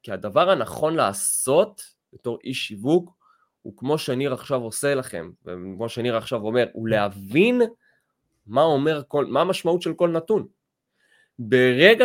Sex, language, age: male, Hebrew, 20-39